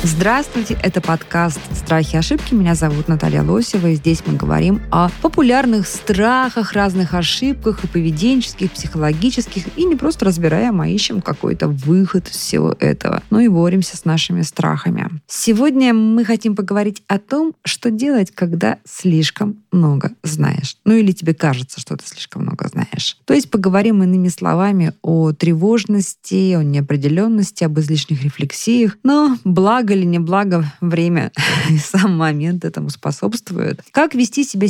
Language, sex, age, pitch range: Russian, female, 20-39, 160-215 Hz